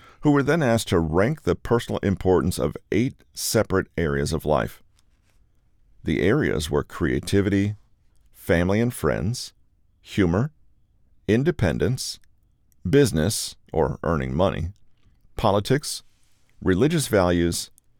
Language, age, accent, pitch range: English, 40-59, American, 85-110 Hz